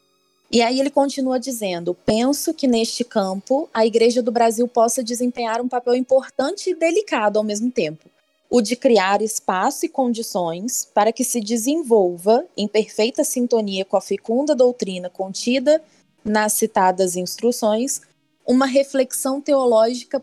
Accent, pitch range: Brazilian, 210-260 Hz